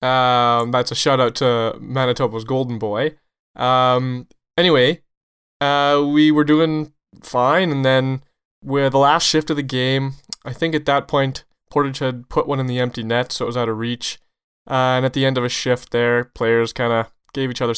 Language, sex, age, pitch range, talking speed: English, male, 20-39, 120-135 Hz, 200 wpm